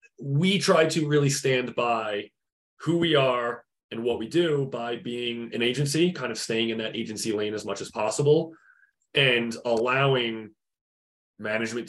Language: English